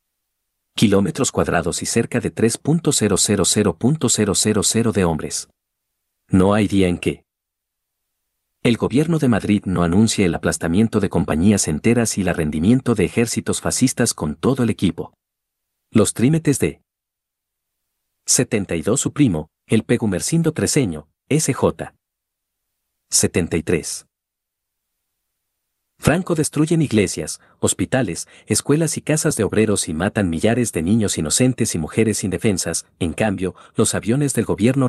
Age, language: 50-69, Spanish